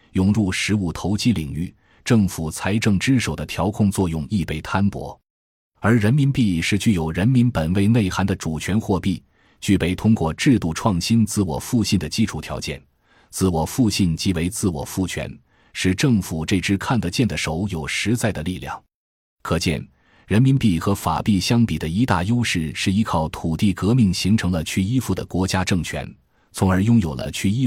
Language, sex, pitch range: Chinese, male, 85-110 Hz